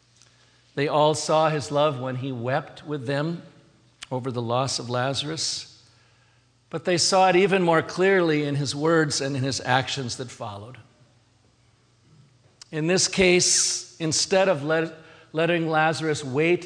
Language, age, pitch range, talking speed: English, 50-69, 125-170 Hz, 140 wpm